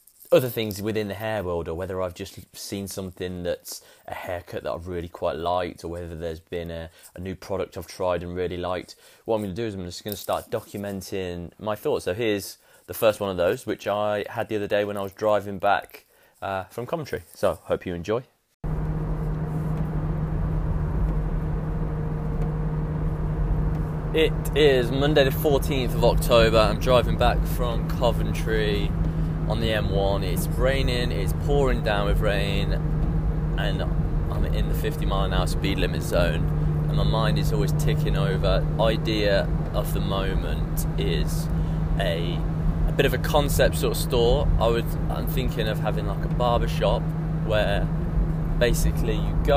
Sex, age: male, 20-39